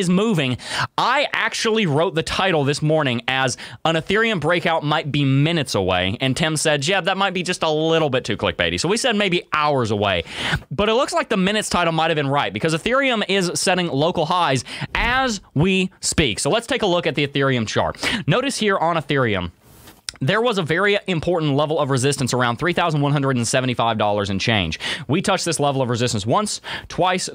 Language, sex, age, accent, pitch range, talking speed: English, male, 20-39, American, 125-180 Hz, 195 wpm